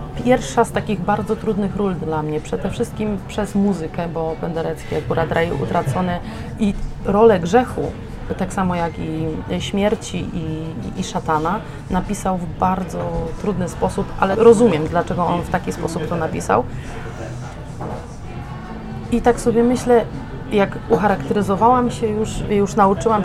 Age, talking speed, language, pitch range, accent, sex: 30-49, 135 wpm, Polish, 160-215 Hz, native, female